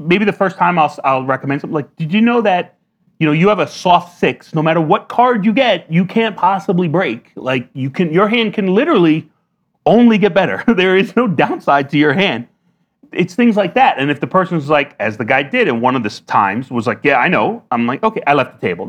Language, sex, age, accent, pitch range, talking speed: English, male, 30-49, American, 135-200 Hz, 245 wpm